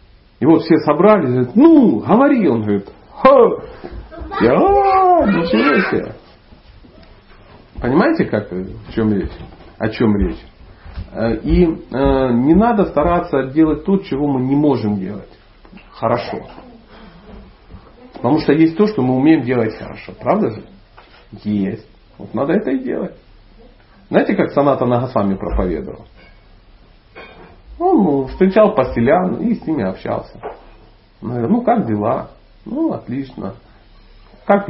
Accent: native